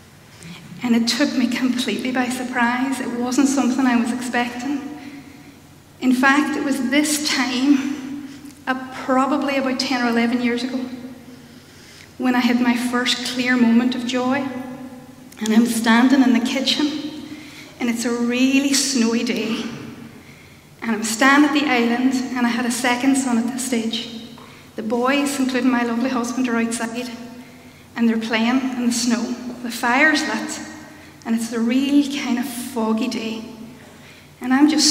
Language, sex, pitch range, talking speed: English, female, 240-265 Hz, 155 wpm